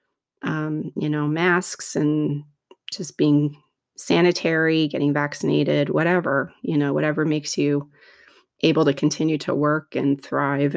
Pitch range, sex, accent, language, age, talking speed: 150-195 Hz, female, American, English, 30-49, 130 wpm